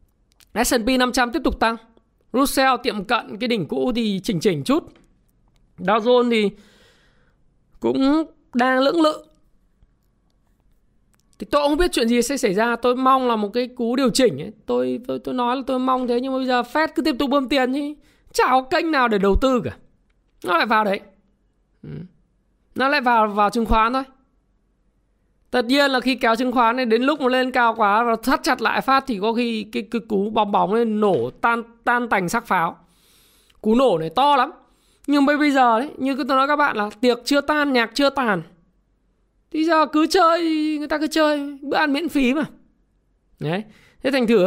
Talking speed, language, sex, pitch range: 195 wpm, Vietnamese, male, 215-270 Hz